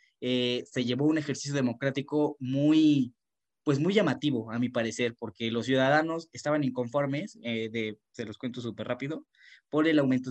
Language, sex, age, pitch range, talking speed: Spanish, male, 20-39, 110-135 Hz, 165 wpm